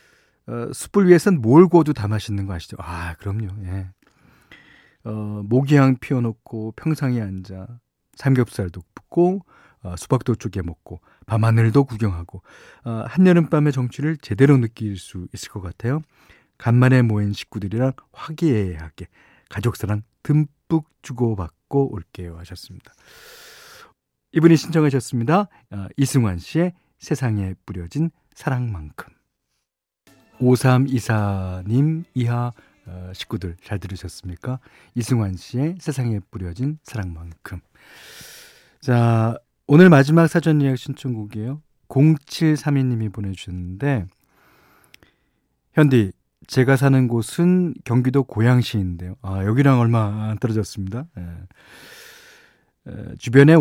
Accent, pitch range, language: native, 100-140 Hz, Korean